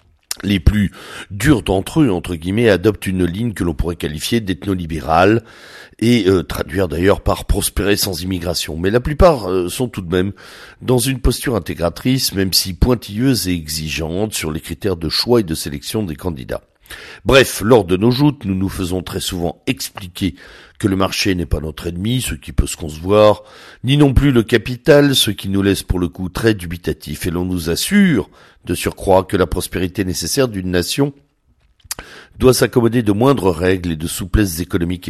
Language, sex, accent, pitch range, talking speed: French, male, French, 85-120 Hz, 185 wpm